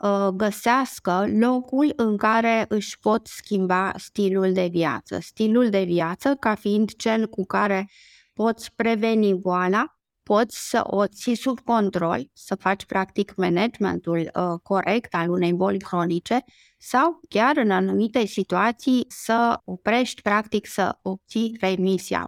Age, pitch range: 20-39, 180-220 Hz